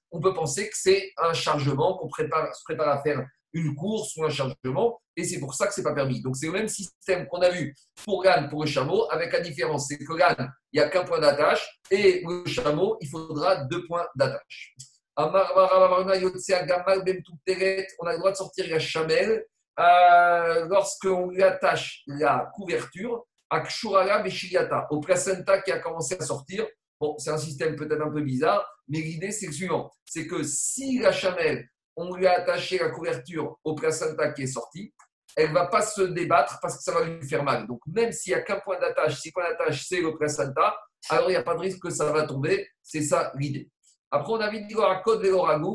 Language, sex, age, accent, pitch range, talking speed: French, male, 50-69, French, 155-190 Hz, 215 wpm